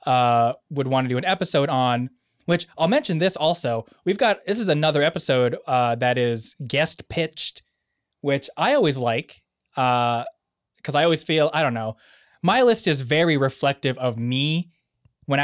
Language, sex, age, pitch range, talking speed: English, male, 20-39, 125-165 Hz, 170 wpm